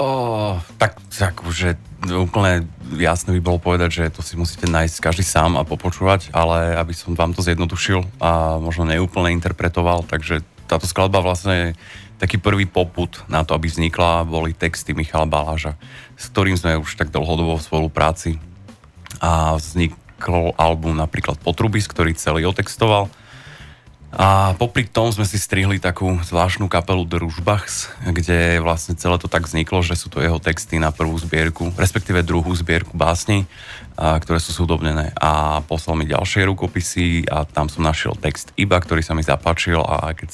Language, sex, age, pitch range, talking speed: Slovak, male, 30-49, 80-95 Hz, 160 wpm